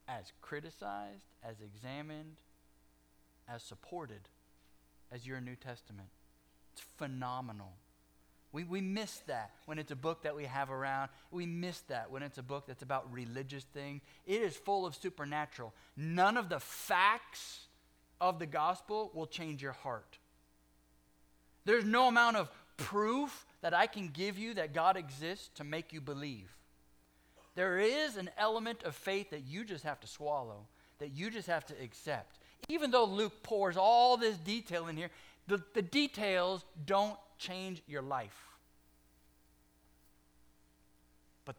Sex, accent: male, American